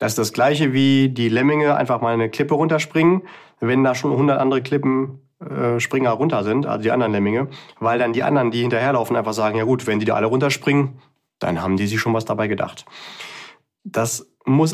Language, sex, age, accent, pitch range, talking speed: German, male, 30-49, German, 110-135 Hz, 205 wpm